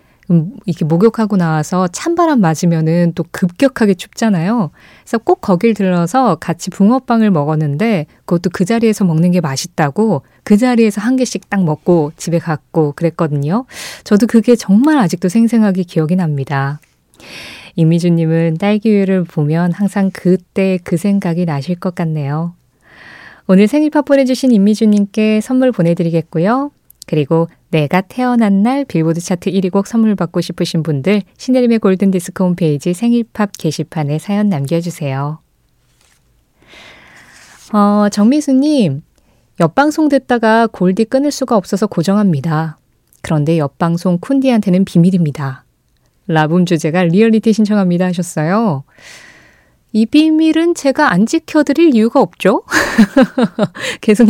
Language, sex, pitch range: Korean, female, 170-225 Hz